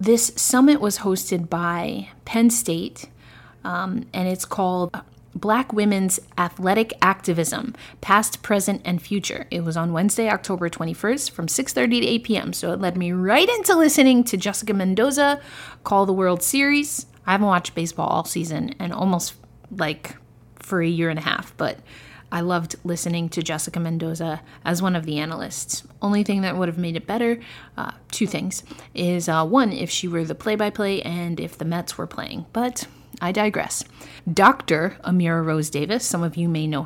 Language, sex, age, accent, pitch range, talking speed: English, female, 20-39, American, 165-210 Hz, 175 wpm